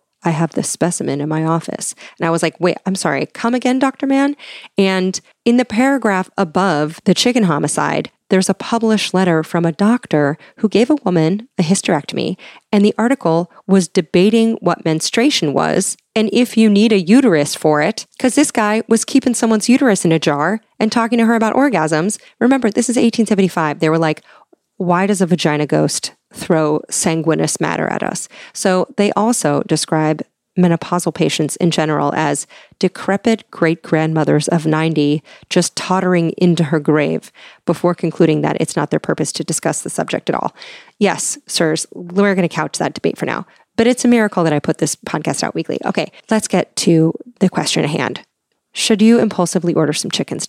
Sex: female